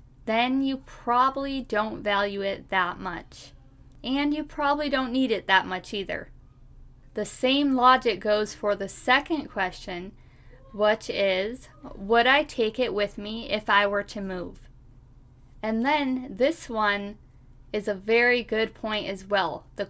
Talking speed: 150 wpm